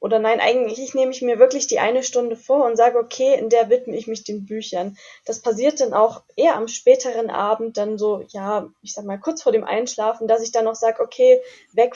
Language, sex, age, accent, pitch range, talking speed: German, female, 10-29, German, 215-245 Hz, 230 wpm